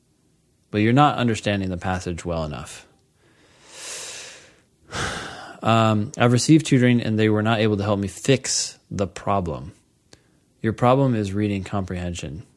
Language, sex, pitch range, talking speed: English, male, 100-125 Hz, 135 wpm